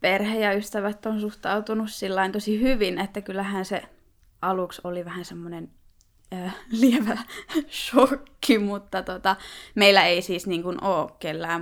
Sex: female